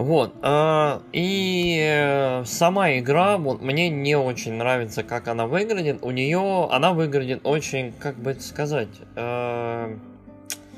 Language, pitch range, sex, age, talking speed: Russian, 125-165 Hz, male, 20-39, 110 wpm